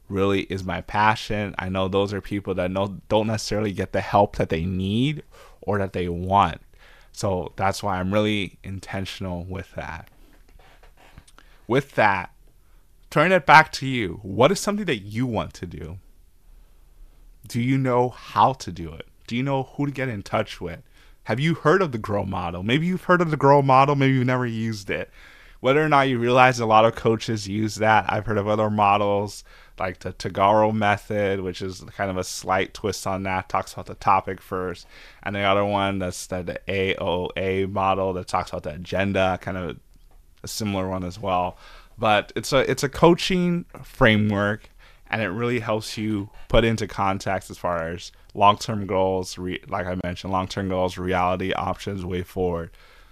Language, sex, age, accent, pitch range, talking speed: English, male, 20-39, American, 95-110 Hz, 185 wpm